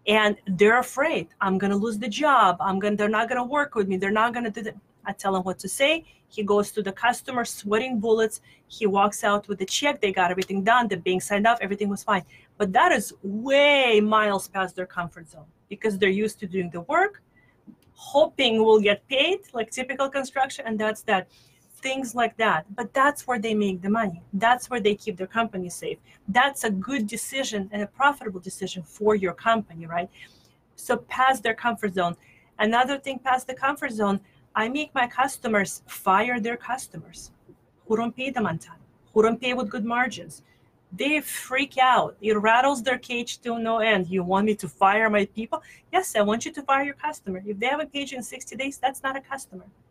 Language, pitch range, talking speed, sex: Hebrew, 195-255 Hz, 215 wpm, female